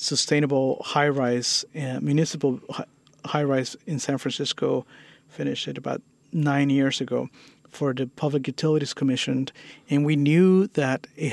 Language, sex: English, male